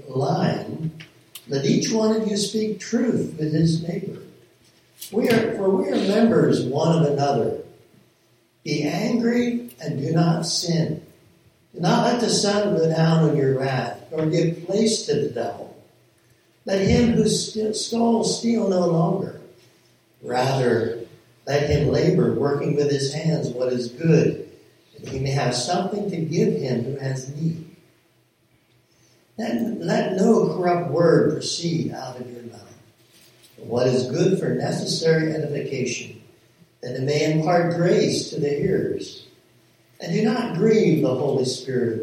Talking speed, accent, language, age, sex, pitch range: 150 wpm, American, English, 60-79, male, 125-190 Hz